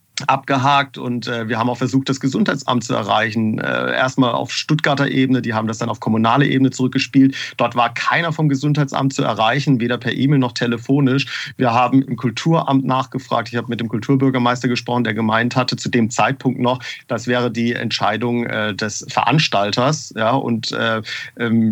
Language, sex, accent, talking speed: German, male, German, 175 wpm